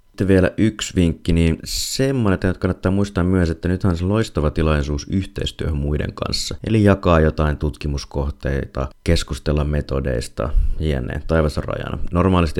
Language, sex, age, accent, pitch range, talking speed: Finnish, male, 30-49, native, 70-80 Hz, 140 wpm